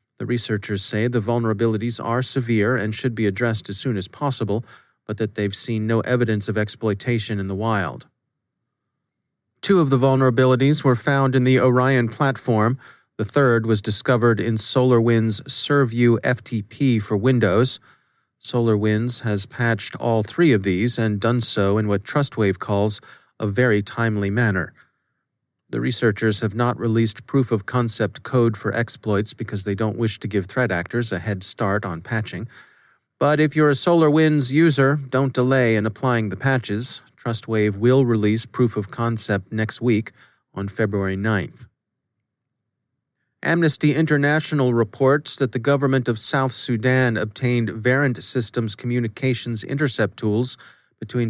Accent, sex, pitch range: American, male, 110-130 Hz